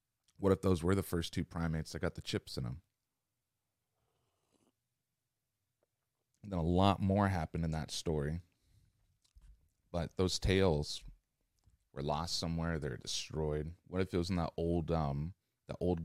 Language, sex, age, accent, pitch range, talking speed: English, male, 30-49, American, 80-100 Hz, 155 wpm